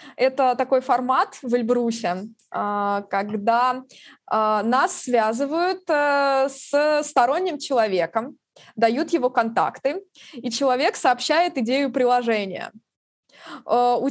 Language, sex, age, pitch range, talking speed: Russian, female, 20-39, 245-295 Hz, 85 wpm